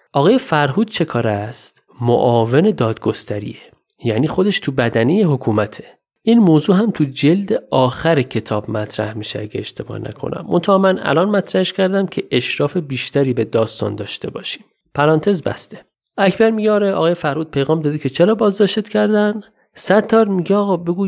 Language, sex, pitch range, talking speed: Persian, male, 125-185 Hz, 145 wpm